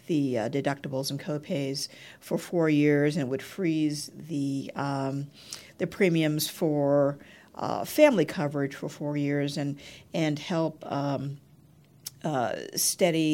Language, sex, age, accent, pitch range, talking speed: English, female, 50-69, American, 140-165 Hz, 130 wpm